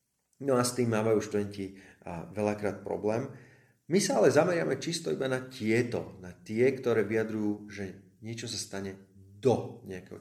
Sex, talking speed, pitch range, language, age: male, 155 wpm, 95-115 Hz, Slovak, 30-49